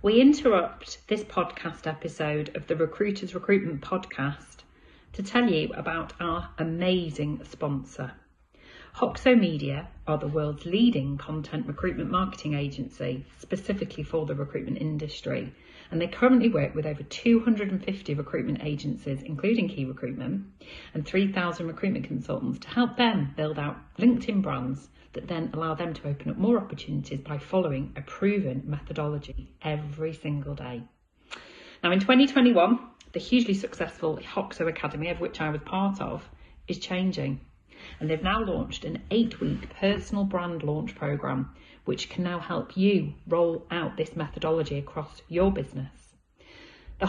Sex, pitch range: female, 150-195 Hz